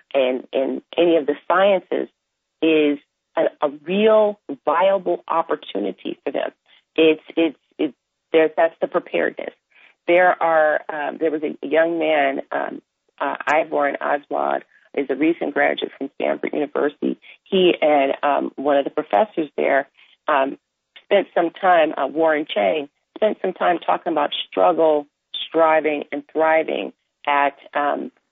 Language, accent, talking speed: English, American, 140 wpm